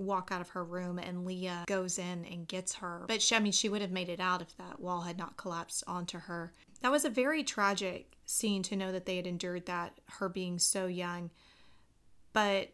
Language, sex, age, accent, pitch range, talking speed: English, female, 30-49, American, 175-210 Hz, 225 wpm